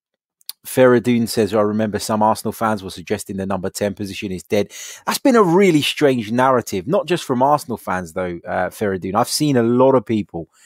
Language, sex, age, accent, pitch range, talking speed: English, male, 20-39, British, 100-120 Hz, 195 wpm